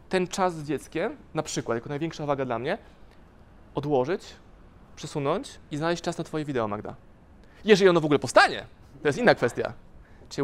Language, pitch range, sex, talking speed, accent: Polish, 135-170 Hz, male, 170 wpm, native